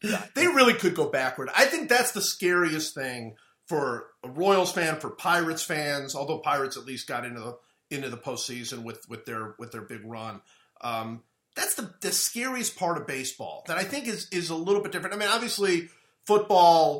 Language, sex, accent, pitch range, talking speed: English, male, American, 130-185 Hz, 200 wpm